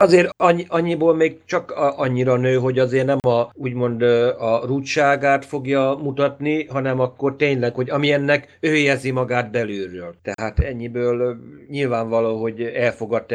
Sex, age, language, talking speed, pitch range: male, 60-79, Hungarian, 130 wpm, 115-145 Hz